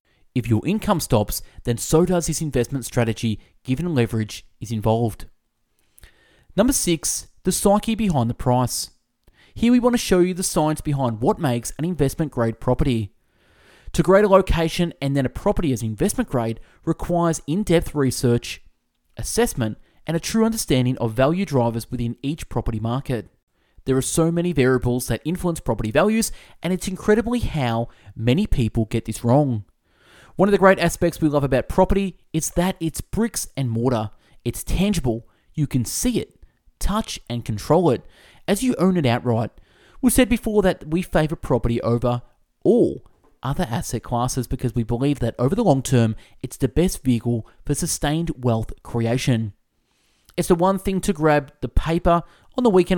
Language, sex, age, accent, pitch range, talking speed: English, male, 20-39, Australian, 115-175 Hz, 170 wpm